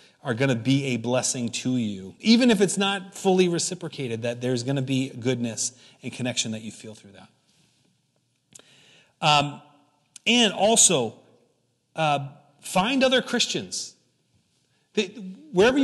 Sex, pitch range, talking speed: male, 135-180 Hz, 135 wpm